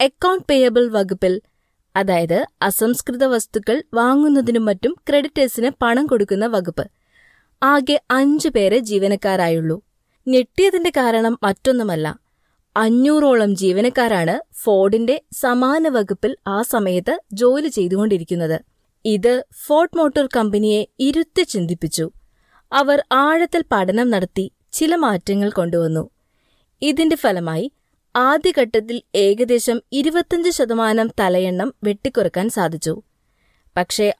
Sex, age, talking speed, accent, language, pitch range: female, 20-39, 90 wpm, native, Malayalam, 195-270 Hz